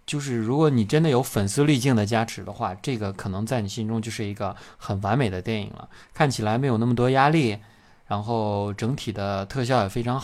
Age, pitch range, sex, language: 20-39, 105-140 Hz, male, Chinese